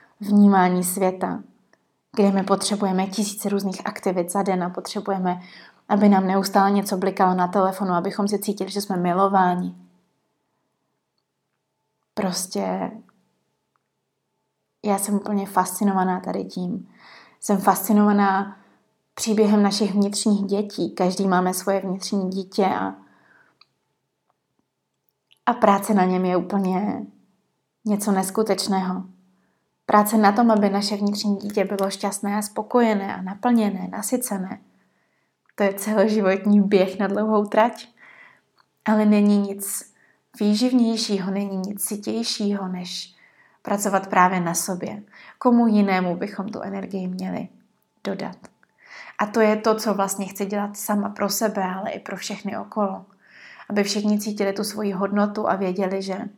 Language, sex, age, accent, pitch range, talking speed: Czech, female, 30-49, native, 190-210 Hz, 125 wpm